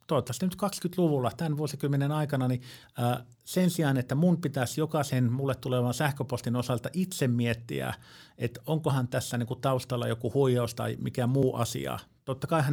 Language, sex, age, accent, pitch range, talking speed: Finnish, male, 50-69, native, 125-160 Hz, 150 wpm